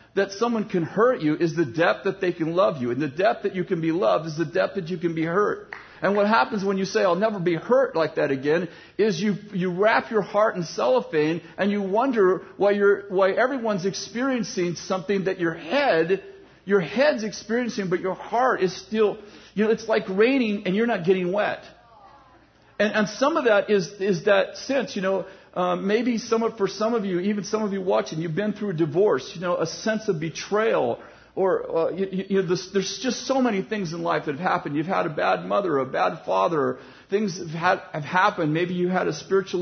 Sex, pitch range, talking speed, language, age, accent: male, 175-215 Hz, 225 wpm, English, 50-69, American